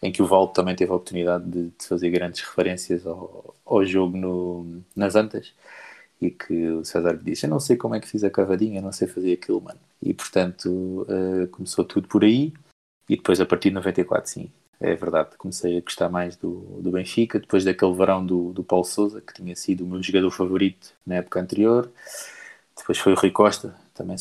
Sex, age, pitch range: male, 20-39, 90-100 Hz